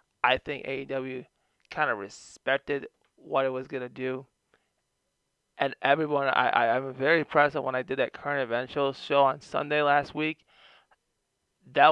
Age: 20-39